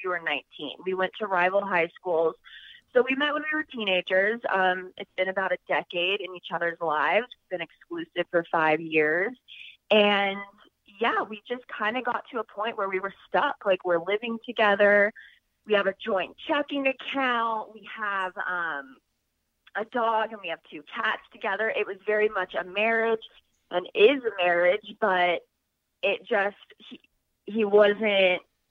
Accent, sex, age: American, female, 20-39